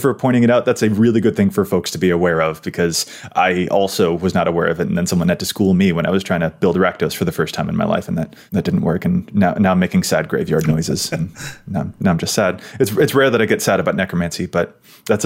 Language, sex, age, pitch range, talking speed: English, male, 20-39, 105-150 Hz, 290 wpm